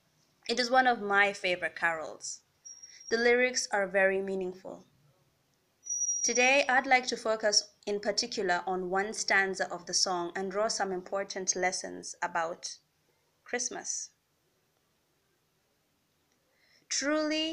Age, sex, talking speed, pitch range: 20-39, female, 115 wpm, 190-235 Hz